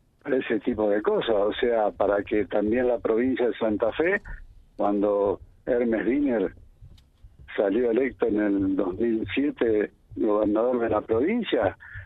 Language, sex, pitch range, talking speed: Spanish, male, 105-135 Hz, 135 wpm